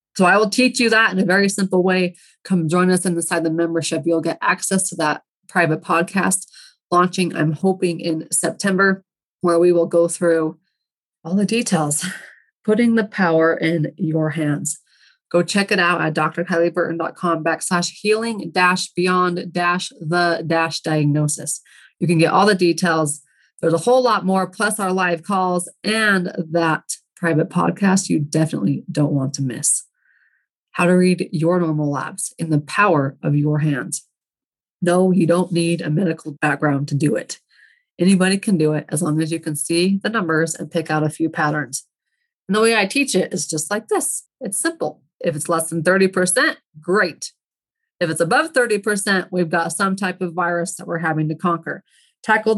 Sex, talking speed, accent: female, 175 wpm, American